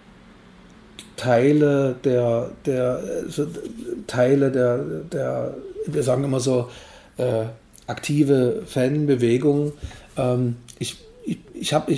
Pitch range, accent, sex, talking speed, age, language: 115-135 Hz, German, male, 90 wpm, 40-59, German